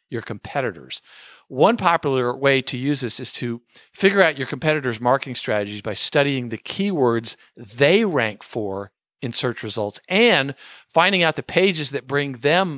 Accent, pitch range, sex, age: American, 125-180 Hz, male, 50-69